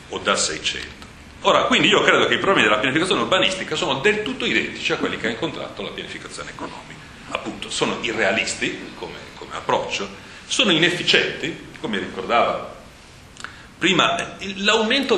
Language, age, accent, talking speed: Italian, 40-59, native, 145 wpm